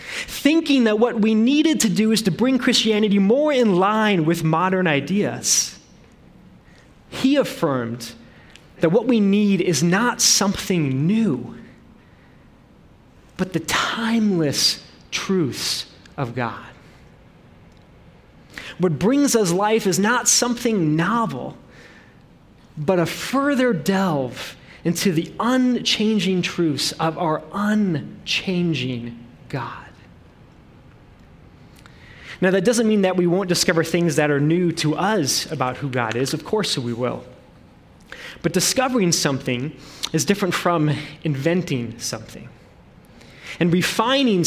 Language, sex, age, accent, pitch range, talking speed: English, male, 30-49, American, 150-215 Hz, 115 wpm